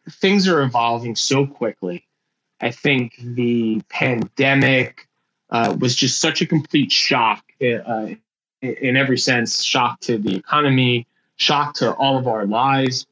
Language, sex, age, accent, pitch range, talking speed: English, male, 20-39, American, 115-140 Hz, 135 wpm